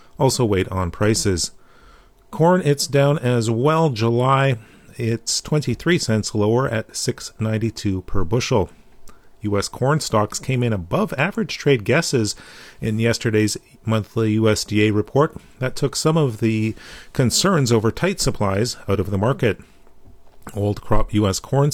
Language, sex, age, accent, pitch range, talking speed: English, male, 40-59, American, 105-135 Hz, 135 wpm